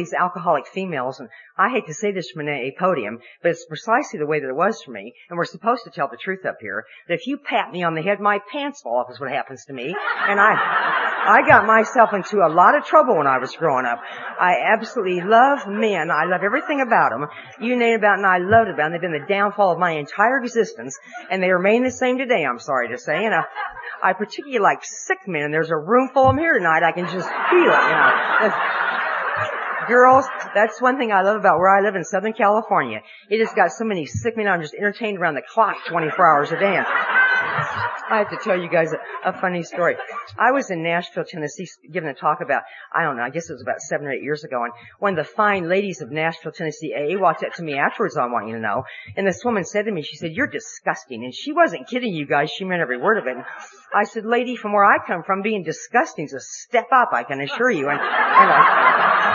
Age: 50-69